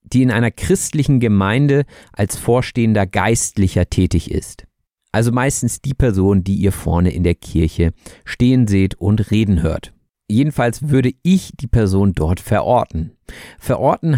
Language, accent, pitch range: German, German, 90-115 Hz